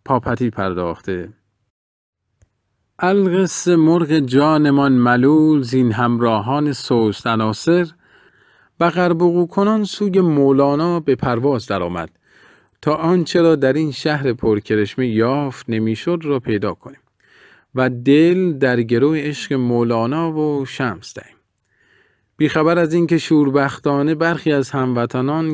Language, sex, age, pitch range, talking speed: Persian, male, 40-59, 115-160 Hz, 110 wpm